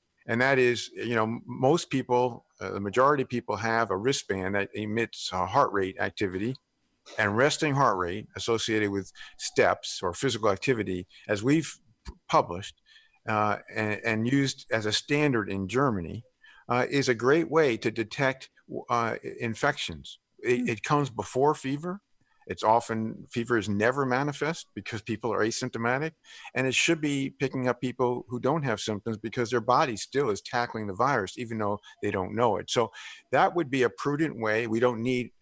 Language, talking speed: English, 175 wpm